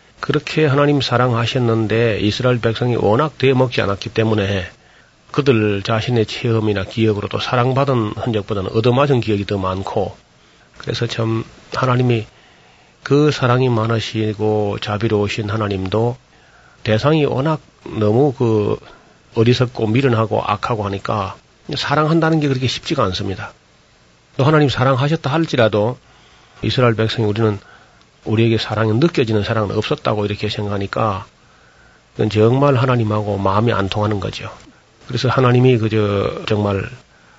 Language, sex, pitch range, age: Korean, male, 105-125 Hz, 40-59